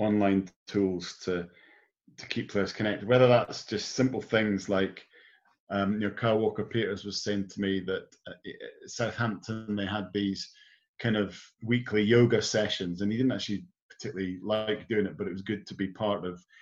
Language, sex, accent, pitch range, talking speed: English, male, British, 95-110 Hz, 180 wpm